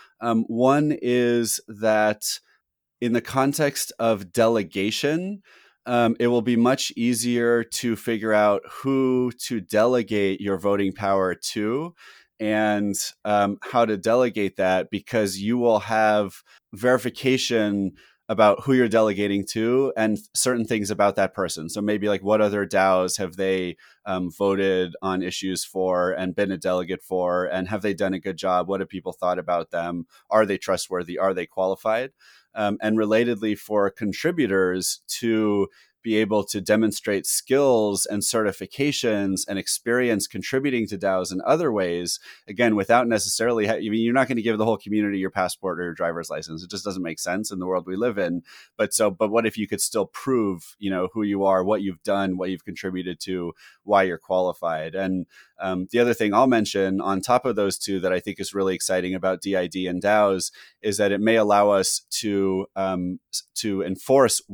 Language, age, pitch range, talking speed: English, 30-49, 95-115 Hz, 180 wpm